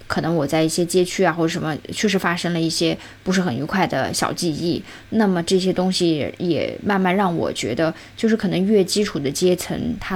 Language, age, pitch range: Chinese, 10-29, 155-200 Hz